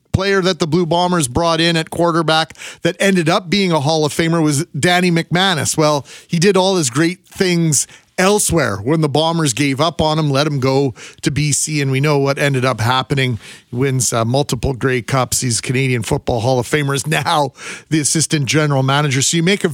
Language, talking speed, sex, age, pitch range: English, 210 wpm, male, 40-59, 135-170 Hz